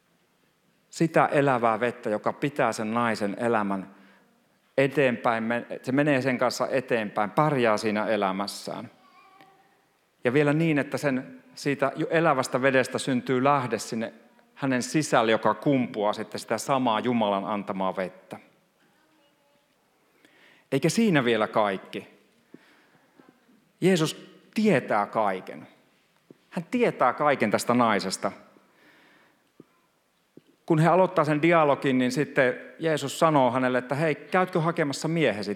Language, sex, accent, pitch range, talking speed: Finnish, male, native, 120-160 Hz, 110 wpm